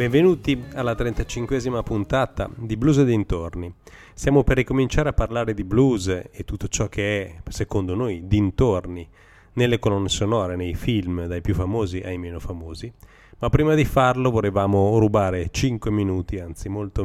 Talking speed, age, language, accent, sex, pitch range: 155 wpm, 30-49, Italian, native, male, 95-115 Hz